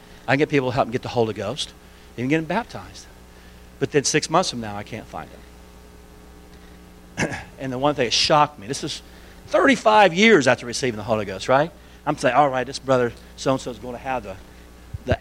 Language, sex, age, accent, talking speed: English, male, 50-69, American, 215 wpm